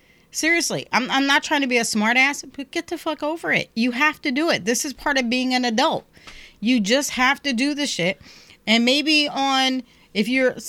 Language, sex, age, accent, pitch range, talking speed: English, female, 40-59, American, 205-285 Hz, 225 wpm